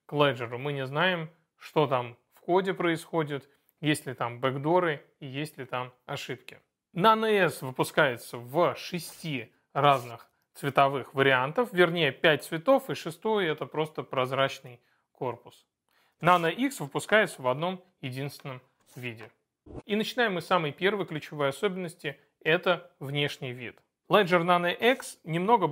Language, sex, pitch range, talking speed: Russian, male, 140-180 Hz, 135 wpm